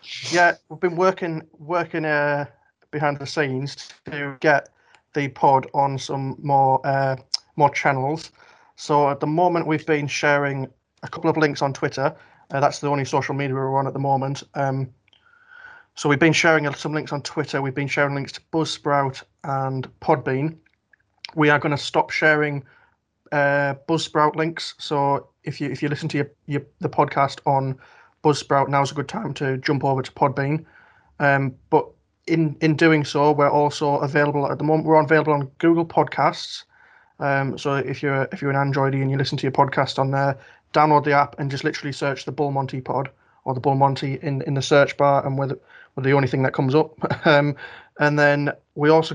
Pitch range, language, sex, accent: 135-155 Hz, English, male, British